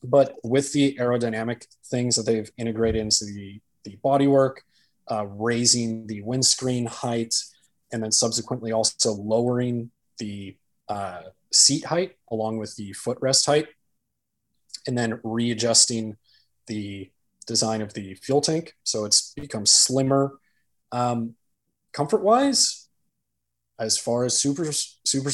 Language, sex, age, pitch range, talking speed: English, male, 20-39, 110-150 Hz, 120 wpm